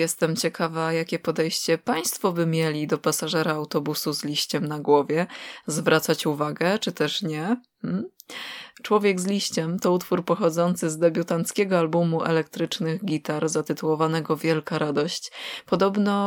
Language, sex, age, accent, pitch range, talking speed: Polish, female, 20-39, native, 155-195 Hz, 125 wpm